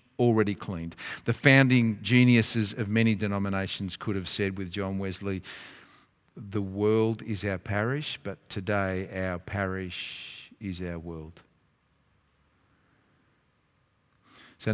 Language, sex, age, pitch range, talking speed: English, male, 50-69, 110-150 Hz, 110 wpm